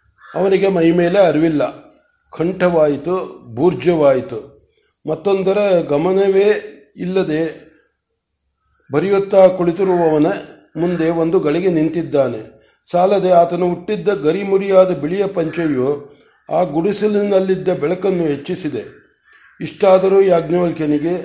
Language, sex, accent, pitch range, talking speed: Kannada, male, native, 155-185 Hz, 80 wpm